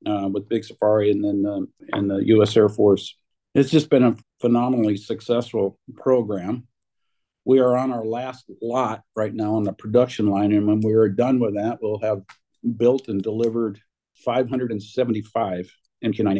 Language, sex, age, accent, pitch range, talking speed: English, male, 50-69, American, 105-130 Hz, 160 wpm